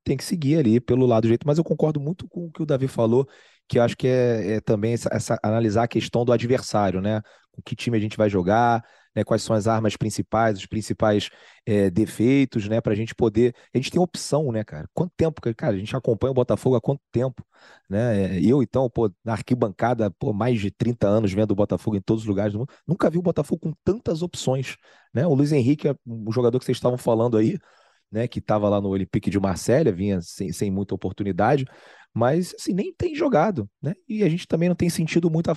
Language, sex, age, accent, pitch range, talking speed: Portuguese, male, 30-49, Brazilian, 105-135 Hz, 230 wpm